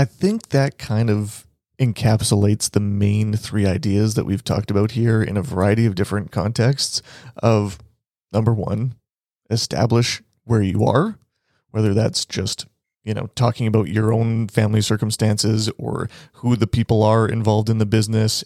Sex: male